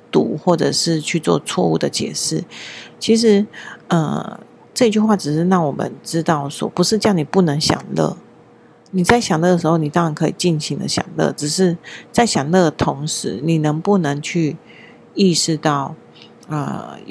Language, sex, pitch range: Chinese, female, 155-190 Hz